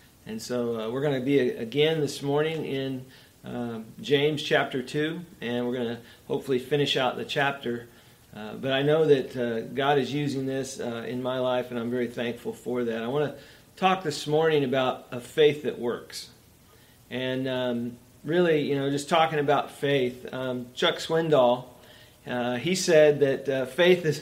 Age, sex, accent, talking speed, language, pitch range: 40-59, male, American, 185 wpm, English, 130-155 Hz